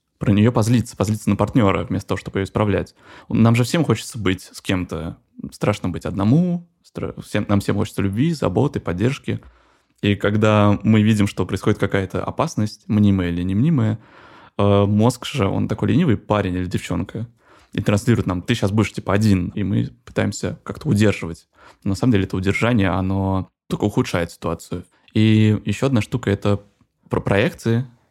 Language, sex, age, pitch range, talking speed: Russian, male, 20-39, 100-115 Hz, 165 wpm